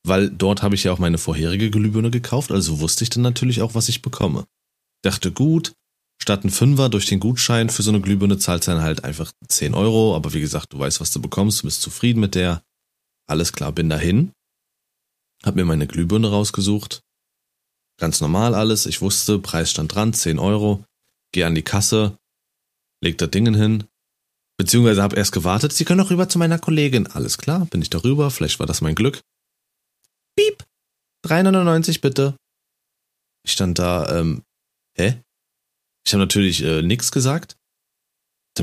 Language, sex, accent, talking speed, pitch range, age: German, male, German, 180 wpm, 95-135 Hz, 30-49